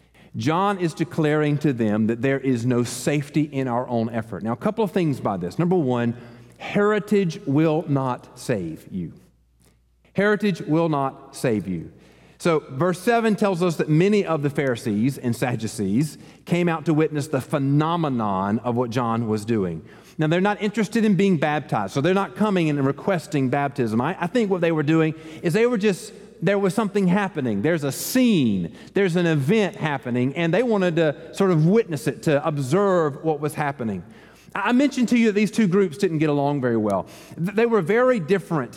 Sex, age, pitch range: male, 40-59, 140-205 Hz